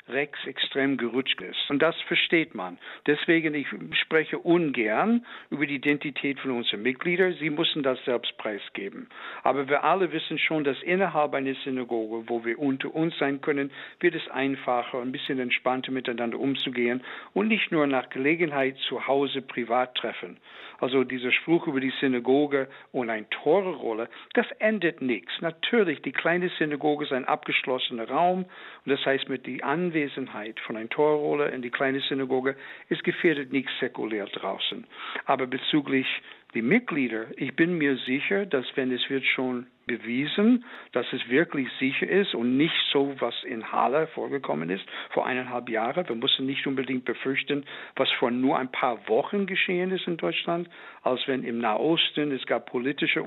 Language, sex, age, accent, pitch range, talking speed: German, male, 60-79, German, 130-160 Hz, 160 wpm